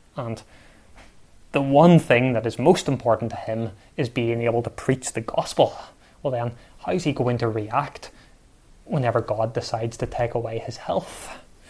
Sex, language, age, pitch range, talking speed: male, English, 20-39, 110-130 Hz, 170 wpm